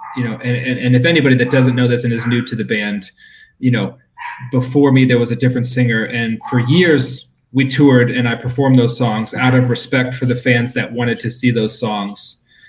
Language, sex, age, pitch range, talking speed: English, male, 30-49, 120-145 Hz, 220 wpm